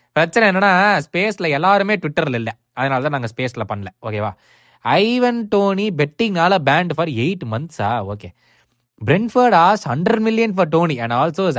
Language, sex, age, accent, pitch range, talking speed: Tamil, male, 20-39, native, 125-185 Hz, 145 wpm